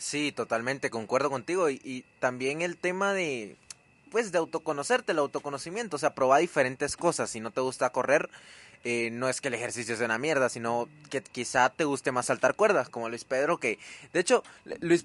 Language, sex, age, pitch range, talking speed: Spanish, male, 20-39, 120-165 Hz, 195 wpm